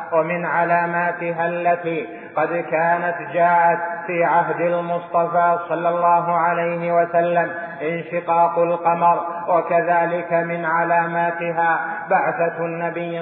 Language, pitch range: Arabic, 165-175 Hz